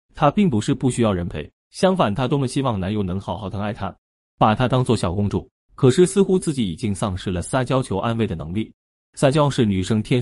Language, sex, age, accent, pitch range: Chinese, male, 30-49, native, 100-145 Hz